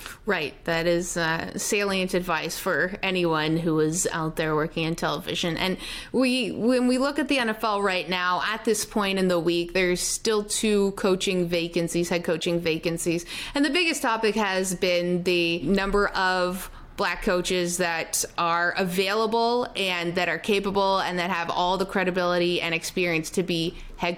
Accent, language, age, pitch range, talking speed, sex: American, English, 30-49, 170-210 Hz, 170 wpm, female